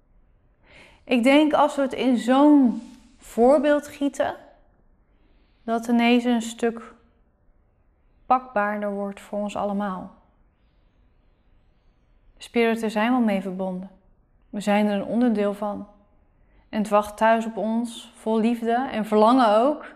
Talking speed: 125 wpm